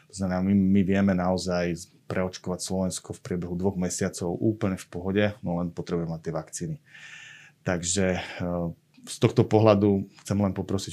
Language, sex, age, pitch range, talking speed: Slovak, male, 30-49, 90-105 Hz, 150 wpm